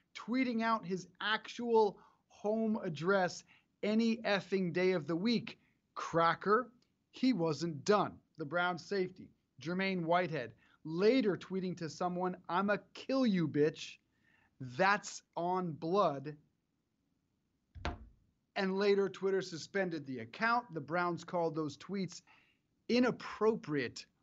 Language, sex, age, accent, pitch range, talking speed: English, male, 30-49, American, 160-200 Hz, 110 wpm